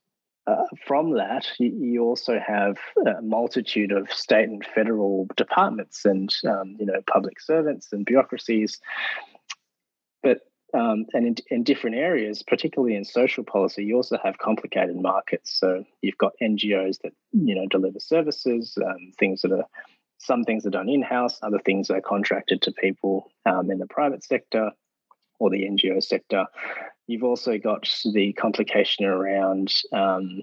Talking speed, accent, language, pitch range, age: 155 wpm, Australian, English, 95-115 Hz, 20-39